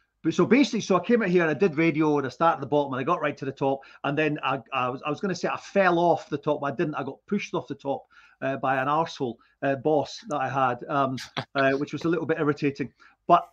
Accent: British